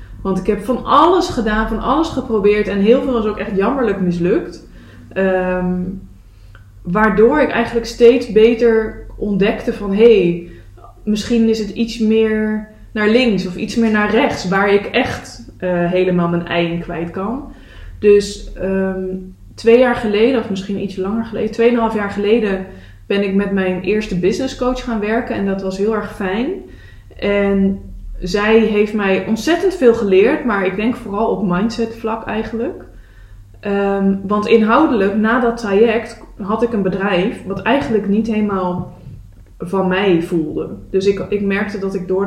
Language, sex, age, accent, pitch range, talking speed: English, female, 20-39, Dutch, 190-230 Hz, 160 wpm